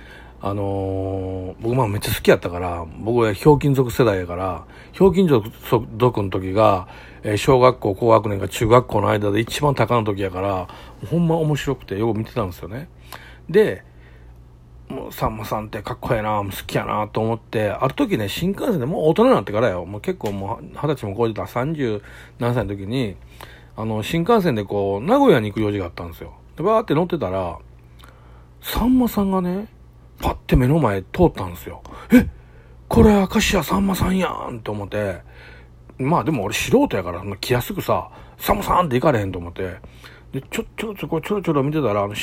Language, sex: Japanese, male